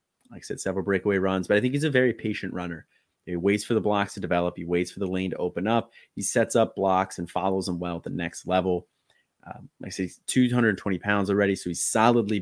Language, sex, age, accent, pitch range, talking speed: English, male, 30-49, American, 90-105 Hz, 250 wpm